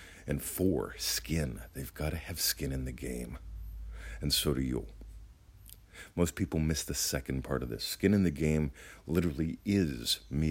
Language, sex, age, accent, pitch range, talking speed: English, male, 50-69, American, 70-90 Hz, 170 wpm